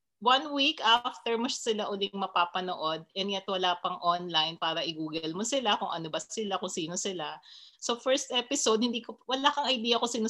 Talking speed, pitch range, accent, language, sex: 190 wpm, 175-230 Hz, native, Filipino, female